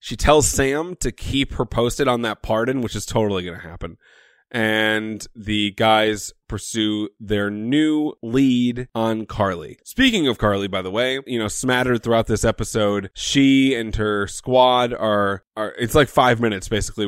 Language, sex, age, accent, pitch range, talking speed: English, male, 20-39, American, 100-125 Hz, 170 wpm